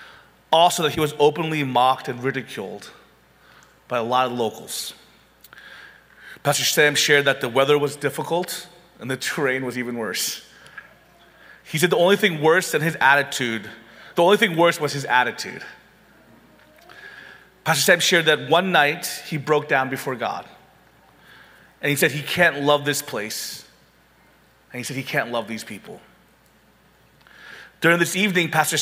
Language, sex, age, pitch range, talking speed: English, male, 30-49, 125-160 Hz, 155 wpm